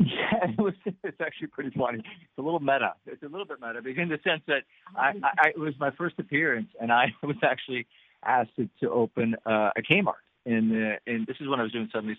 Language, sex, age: English, male, 50-69